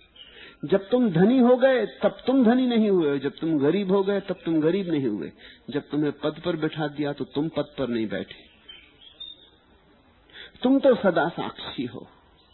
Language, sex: English, male